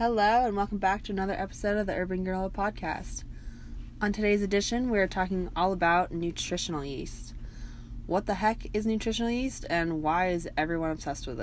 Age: 20-39